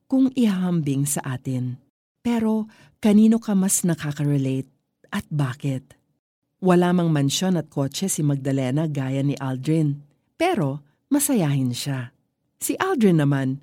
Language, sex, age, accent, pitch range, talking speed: Filipino, female, 40-59, native, 140-190 Hz, 120 wpm